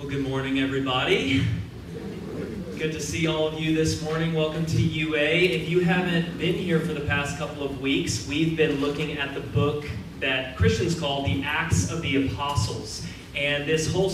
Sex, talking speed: male, 185 wpm